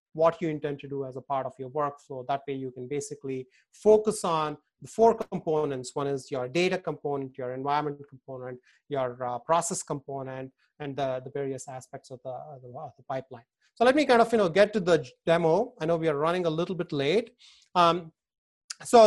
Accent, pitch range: Indian, 140-170 Hz